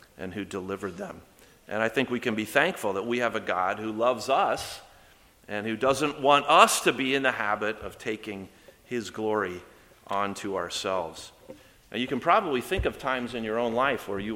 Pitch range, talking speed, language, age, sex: 100-115 Hz, 200 wpm, English, 40-59, male